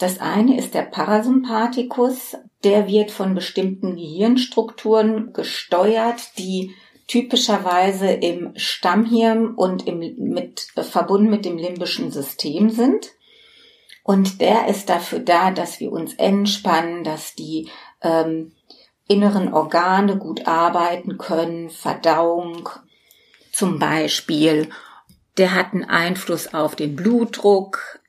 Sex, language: female, German